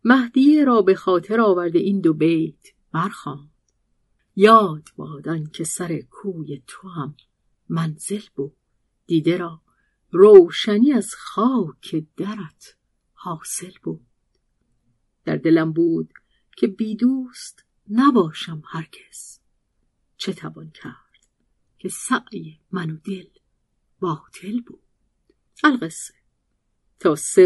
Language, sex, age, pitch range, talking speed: Persian, female, 50-69, 165-230 Hz, 100 wpm